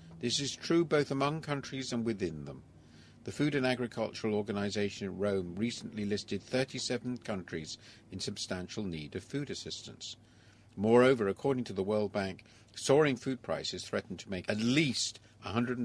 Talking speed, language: 155 wpm, English